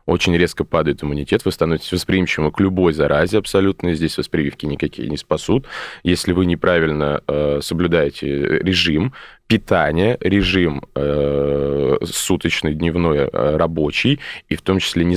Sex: male